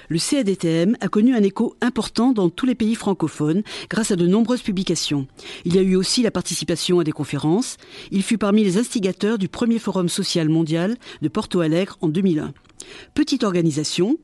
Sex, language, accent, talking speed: female, French, French, 185 wpm